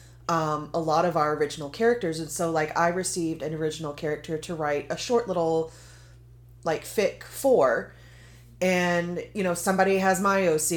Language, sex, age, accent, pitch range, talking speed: English, female, 20-39, American, 155-195 Hz, 165 wpm